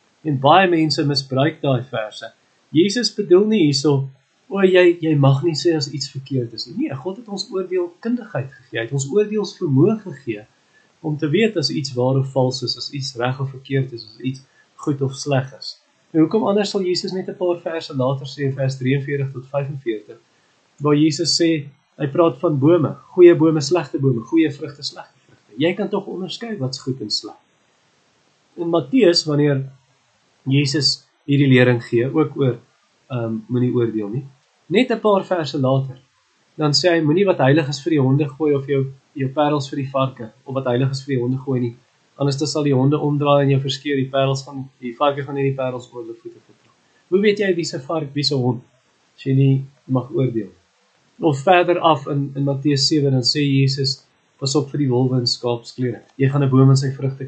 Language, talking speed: English, 205 wpm